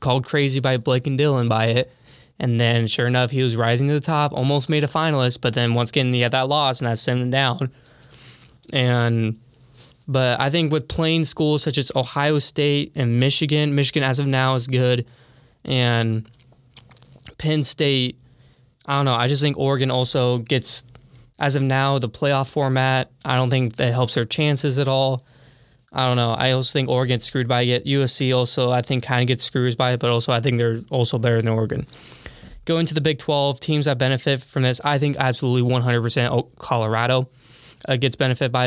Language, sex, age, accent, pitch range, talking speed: English, male, 10-29, American, 120-135 Hz, 200 wpm